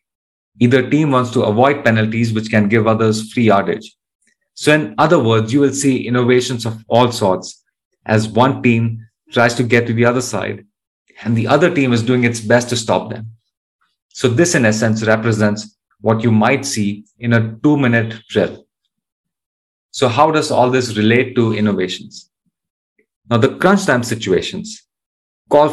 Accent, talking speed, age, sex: Indian, 170 wpm, 30-49, male